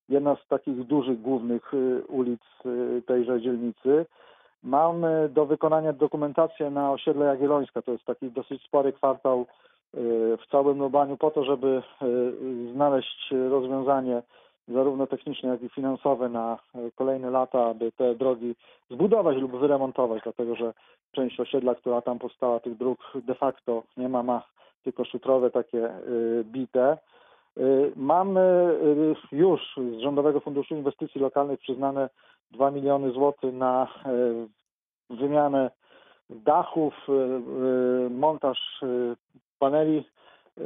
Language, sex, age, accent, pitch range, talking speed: Polish, male, 40-59, native, 125-140 Hz, 115 wpm